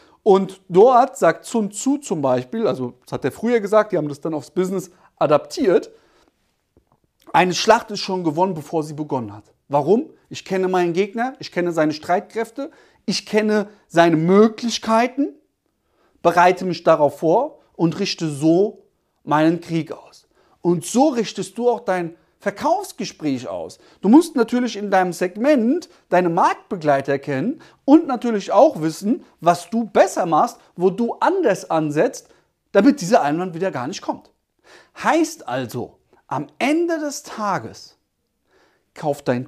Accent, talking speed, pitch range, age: German, 145 wpm, 160-240 Hz, 40-59